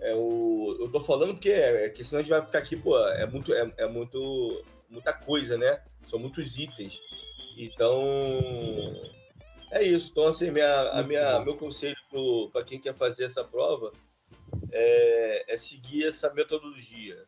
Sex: male